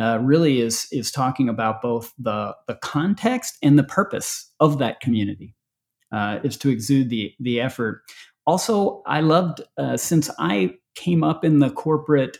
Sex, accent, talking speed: male, American, 165 wpm